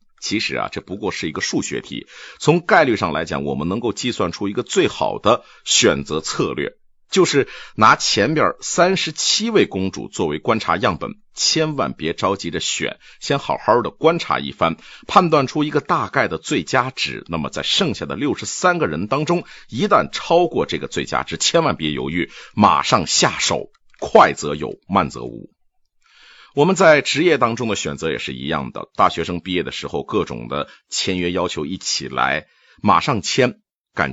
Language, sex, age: Chinese, male, 50-69